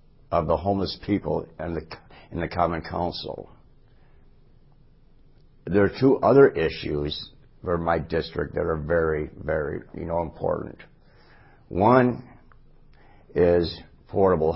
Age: 60-79